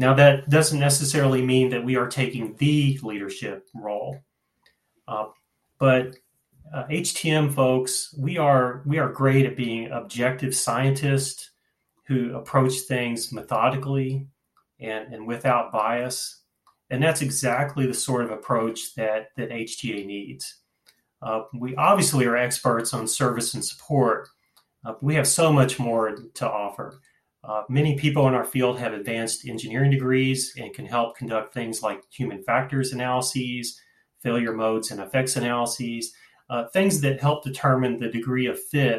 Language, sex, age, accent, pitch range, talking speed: English, male, 30-49, American, 115-135 Hz, 145 wpm